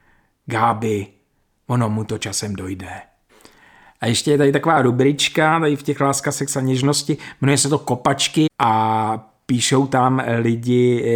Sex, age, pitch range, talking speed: male, 50-69, 110-160 Hz, 140 wpm